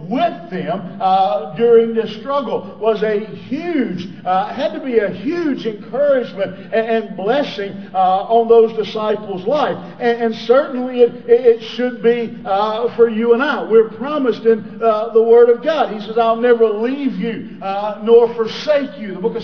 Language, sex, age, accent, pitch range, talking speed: English, male, 50-69, American, 210-245 Hz, 175 wpm